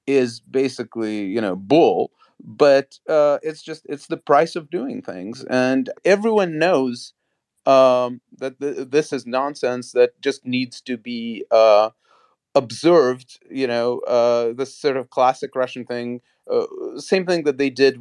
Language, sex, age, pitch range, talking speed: English, male, 30-49, 120-155 Hz, 155 wpm